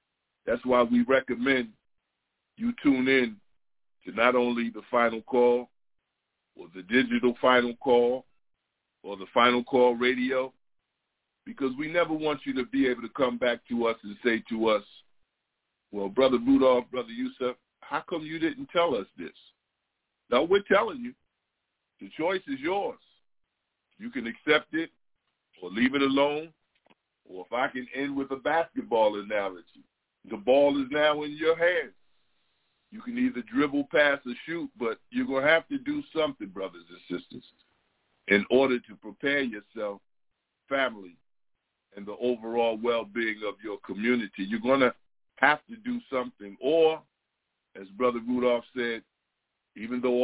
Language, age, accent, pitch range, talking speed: English, 50-69, American, 120-150 Hz, 155 wpm